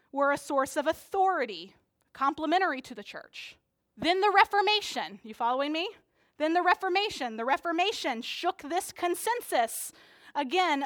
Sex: female